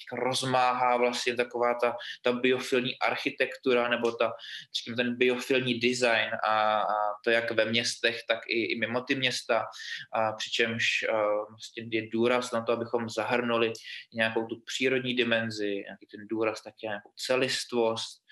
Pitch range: 110-120 Hz